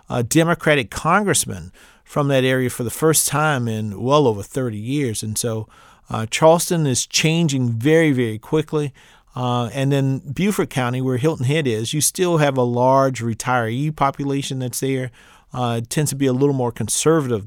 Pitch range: 125-155 Hz